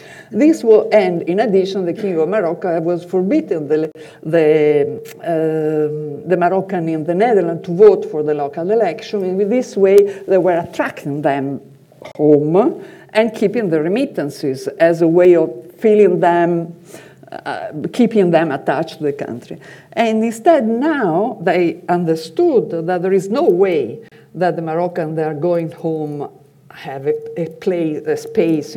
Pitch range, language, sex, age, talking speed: 165-240 Hz, English, female, 50-69, 150 wpm